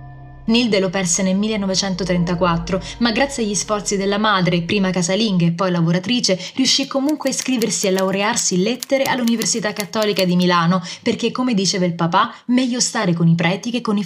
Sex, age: female, 20-39